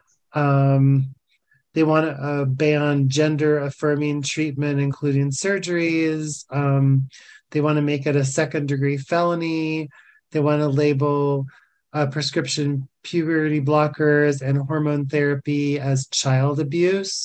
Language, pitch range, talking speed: English, 140-160 Hz, 115 wpm